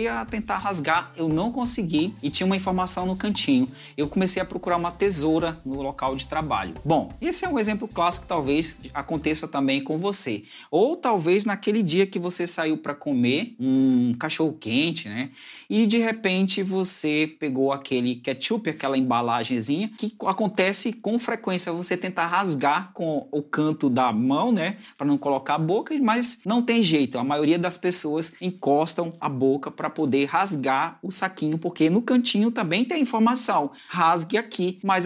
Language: Portuguese